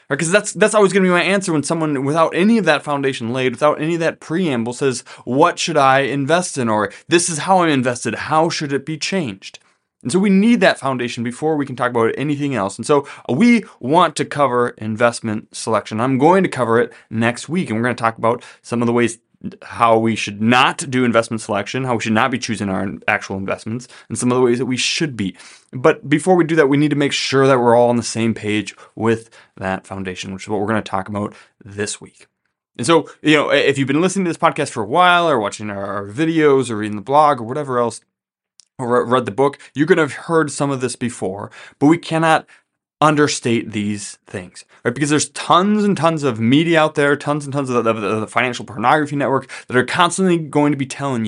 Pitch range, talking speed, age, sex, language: 115-155 Hz, 240 wpm, 20-39, male, English